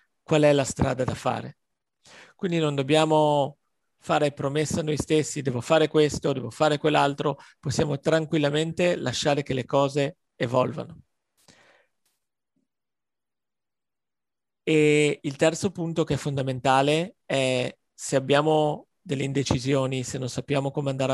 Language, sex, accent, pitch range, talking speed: Italian, male, native, 130-155 Hz, 125 wpm